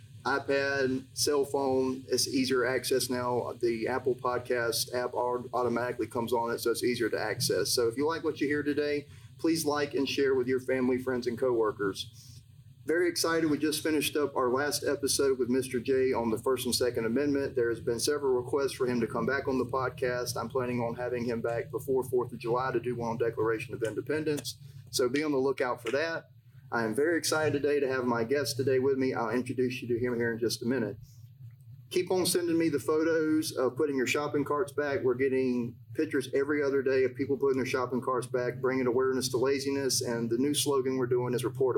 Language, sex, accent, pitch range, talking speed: English, male, American, 125-145 Hz, 220 wpm